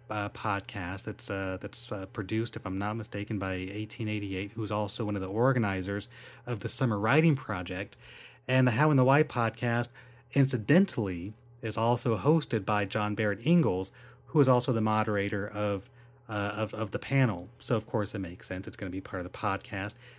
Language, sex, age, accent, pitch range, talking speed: English, male, 30-49, American, 105-130 Hz, 190 wpm